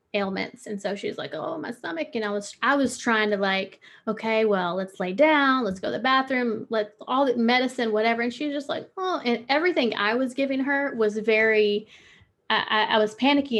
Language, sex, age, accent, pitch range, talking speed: English, female, 20-39, American, 205-260 Hz, 215 wpm